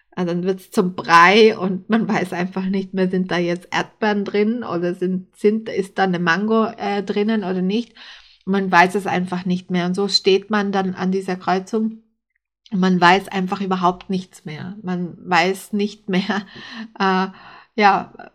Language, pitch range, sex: German, 185-215 Hz, female